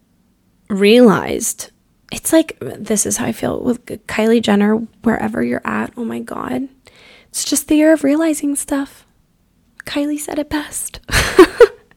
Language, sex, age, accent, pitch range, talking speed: English, female, 10-29, American, 200-275 Hz, 140 wpm